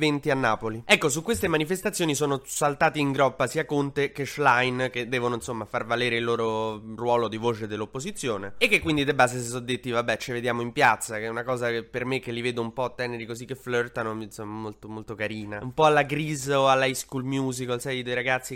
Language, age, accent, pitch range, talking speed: Italian, 20-39, native, 120-140 Hz, 230 wpm